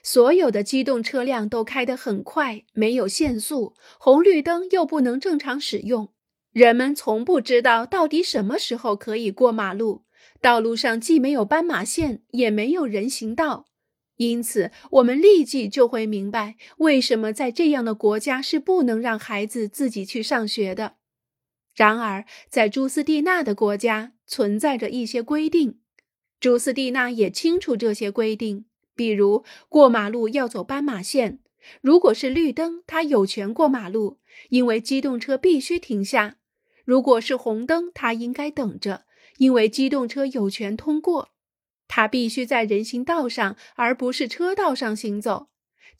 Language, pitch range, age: Chinese, 220-285 Hz, 30-49